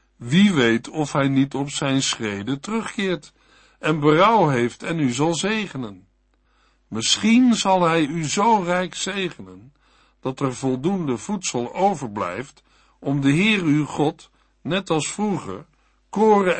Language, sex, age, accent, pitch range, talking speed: Dutch, male, 60-79, Dutch, 125-175 Hz, 135 wpm